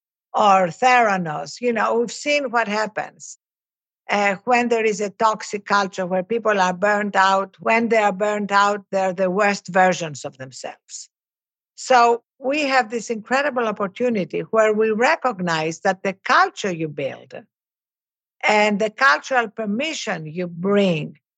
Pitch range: 185-230 Hz